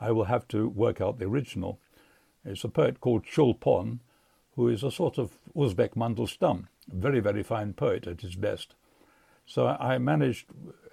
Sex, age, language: male, 60-79, English